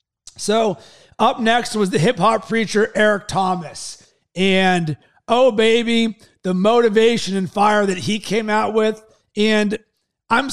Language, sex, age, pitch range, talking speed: English, male, 30-49, 190-220 Hz, 135 wpm